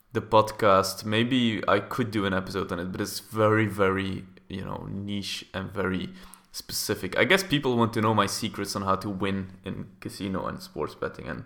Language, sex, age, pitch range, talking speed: English, male, 20-39, 100-125 Hz, 200 wpm